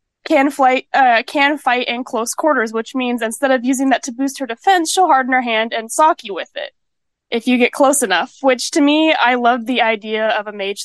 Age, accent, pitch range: 20-39, American, 195-250 Hz